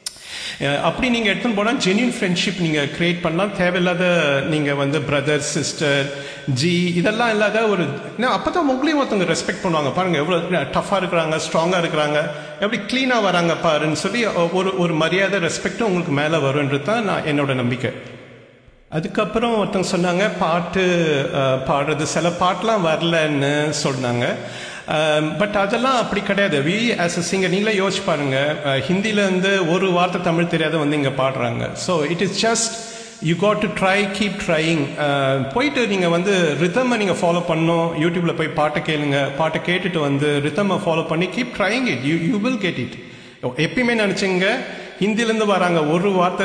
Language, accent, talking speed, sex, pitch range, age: English, Indian, 85 wpm, male, 150-195 Hz, 50-69